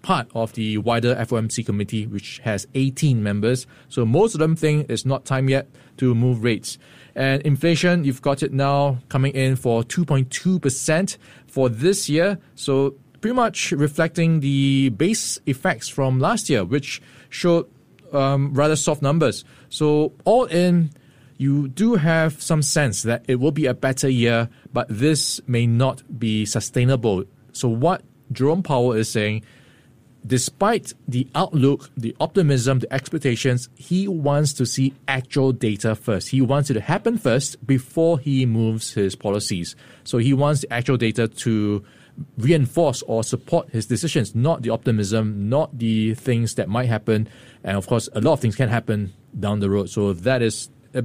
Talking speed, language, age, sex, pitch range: 165 wpm, English, 20-39, male, 115-145 Hz